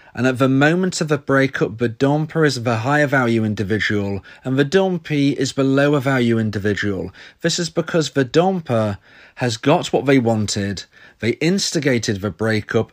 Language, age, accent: English, 30-49, British